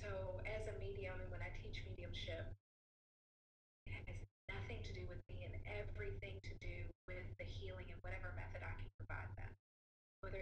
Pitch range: 90-100 Hz